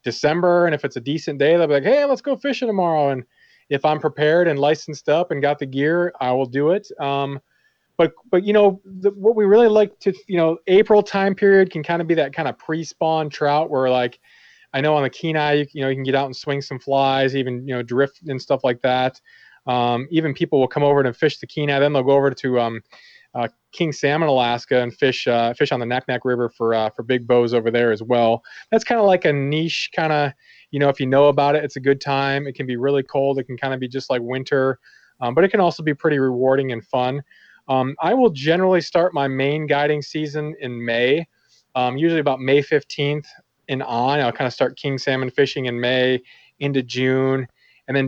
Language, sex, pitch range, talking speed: English, male, 130-160 Hz, 240 wpm